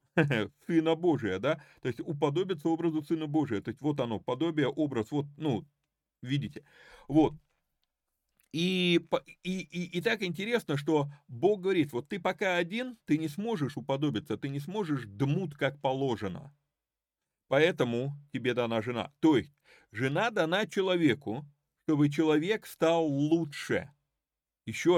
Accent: native